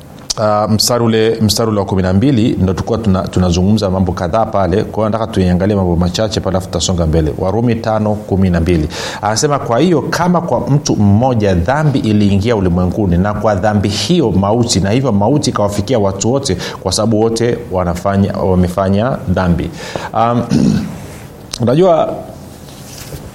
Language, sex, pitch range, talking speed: Swahili, male, 95-120 Hz, 135 wpm